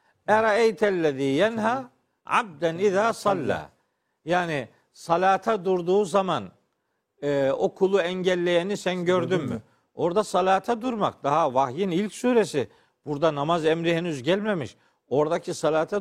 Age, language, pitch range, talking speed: 50-69, Turkish, 155-200 Hz, 95 wpm